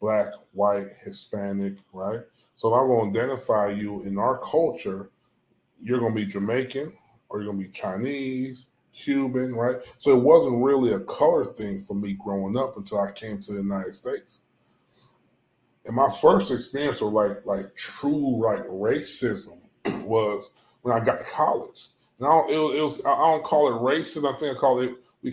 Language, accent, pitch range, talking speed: English, American, 105-140 Hz, 170 wpm